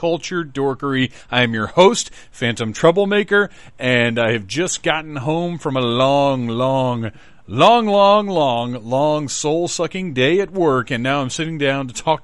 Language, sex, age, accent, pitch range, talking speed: English, male, 40-59, American, 115-140 Hz, 160 wpm